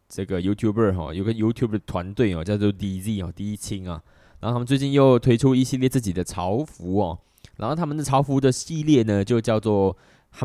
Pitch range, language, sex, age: 95-120 Hz, Chinese, male, 20-39